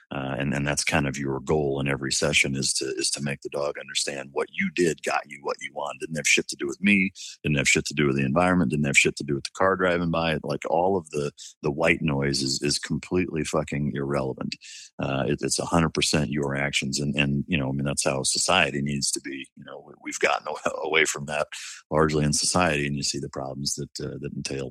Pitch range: 70-85 Hz